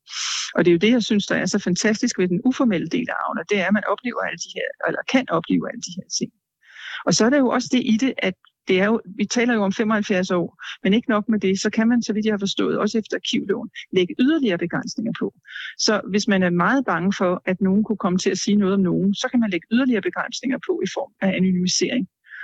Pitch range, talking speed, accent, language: 190-230 Hz, 265 wpm, native, Danish